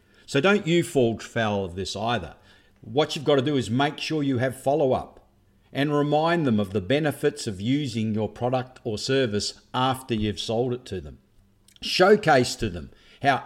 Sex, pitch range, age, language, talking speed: male, 105-145 Hz, 50-69, English, 185 wpm